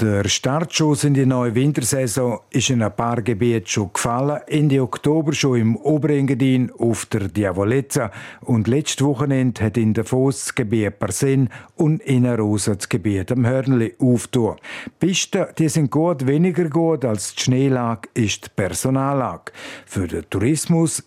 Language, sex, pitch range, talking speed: German, male, 120-155 Hz, 155 wpm